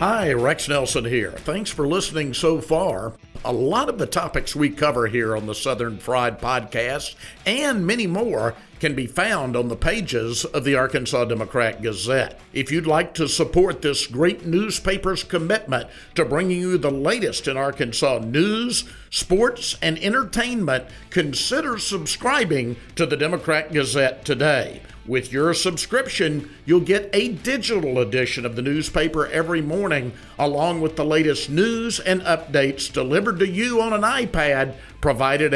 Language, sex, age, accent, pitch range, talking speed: English, male, 50-69, American, 130-185 Hz, 150 wpm